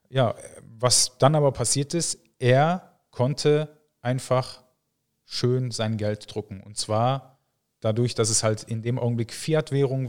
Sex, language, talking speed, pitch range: male, German, 135 wpm, 115-130 Hz